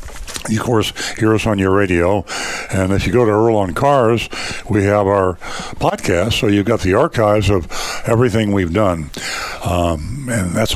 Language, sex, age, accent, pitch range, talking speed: English, male, 60-79, American, 95-110 Hz, 180 wpm